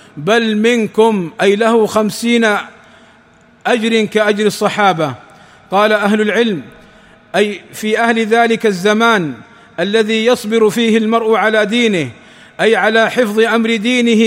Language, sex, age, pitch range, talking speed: Arabic, male, 50-69, 210-230 Hz, 115 wpm